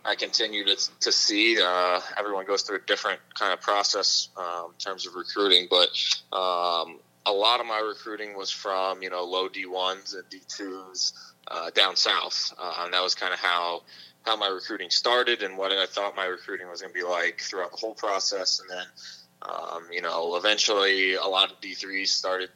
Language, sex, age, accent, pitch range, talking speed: English, male, 20-39, American, 90-105 Hz, 195 wpm